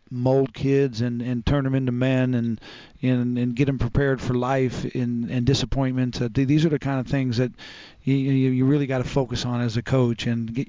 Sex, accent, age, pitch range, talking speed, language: male, American, 40-59, 125-140 Hz, 215 wpm, English